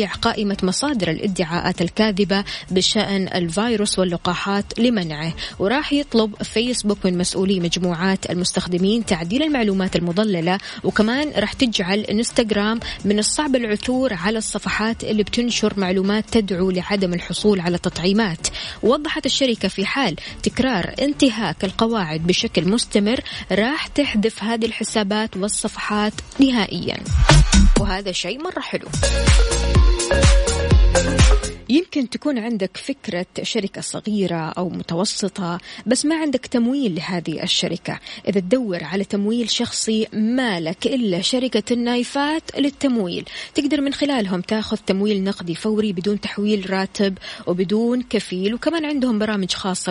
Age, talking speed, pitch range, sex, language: 20-39, 115 wpm, 185-240 Hz, female, Arabic